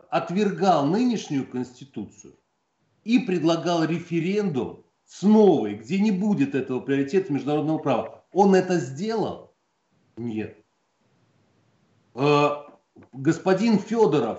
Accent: native